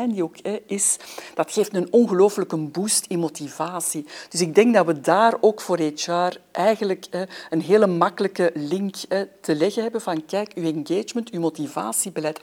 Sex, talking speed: female, 165 wpm